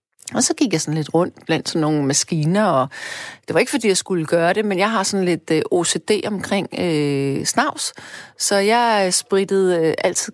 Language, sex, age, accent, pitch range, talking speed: Danish, female, 30-49, native, 155-215 Hz, 190 wpm